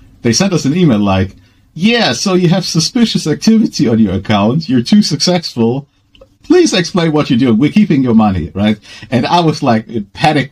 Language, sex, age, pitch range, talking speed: English, male, 50-69, 105-140 Hz, 195 wpm